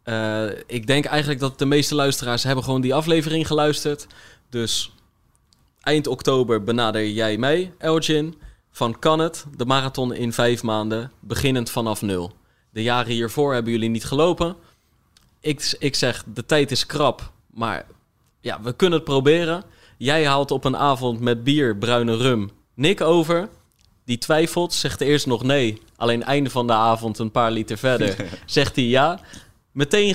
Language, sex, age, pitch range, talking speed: Dutch, male, 20-39, 115-145 Hz, 160 wpm